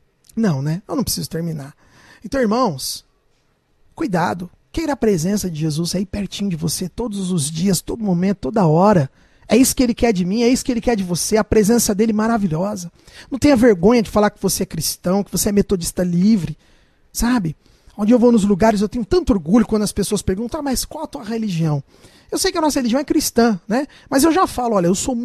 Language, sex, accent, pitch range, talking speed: English, male, Brazilian, 170-245 Hz, 225 wpm